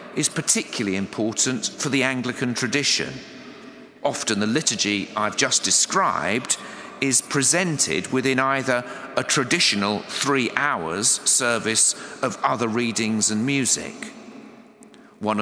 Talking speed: 110 wpm